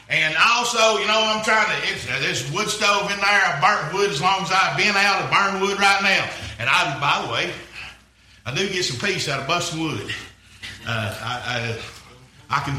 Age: 50-69